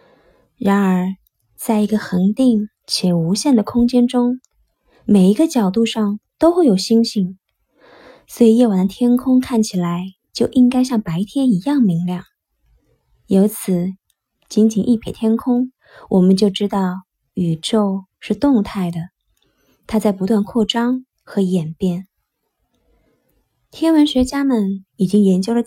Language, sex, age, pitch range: Chinese, female, 20-39, 190-240 Hz